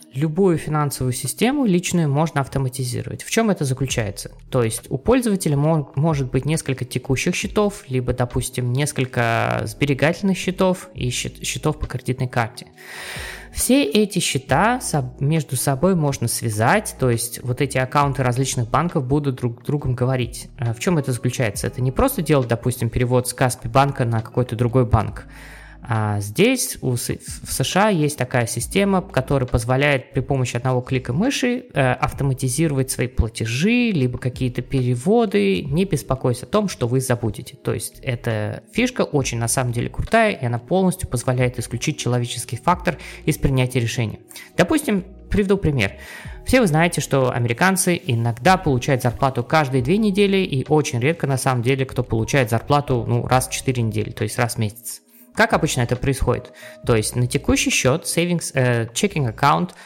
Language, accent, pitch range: Russian, native, 125-165 Hz